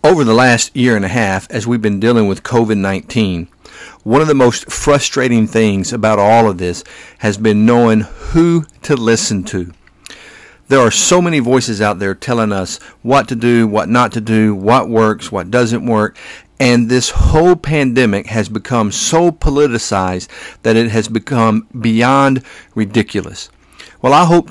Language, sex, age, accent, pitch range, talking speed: English, male, 50-69, American, 110-130 Hz, 165 wpm